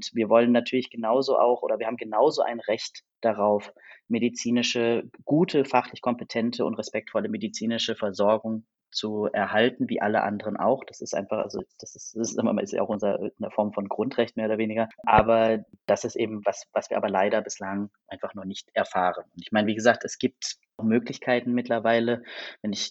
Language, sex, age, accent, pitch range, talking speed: German, male, 20-39, German, 105-120 Hz, 180 wpm